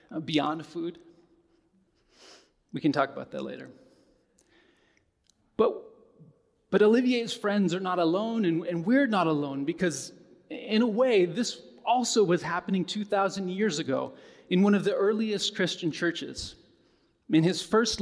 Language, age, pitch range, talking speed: English, 30-49, 170-230 Hz, 135 wpm